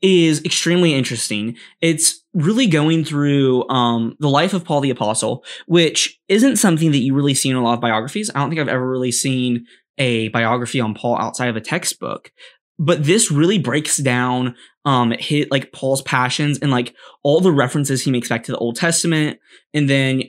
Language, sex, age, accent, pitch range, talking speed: English, male, 10-29, American, 125-160 Hz, 190 wpm